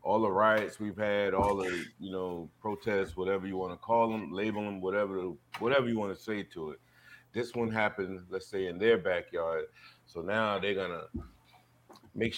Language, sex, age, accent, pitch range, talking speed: English, male, 30-49, American, 95-125 Hz, 195 wpm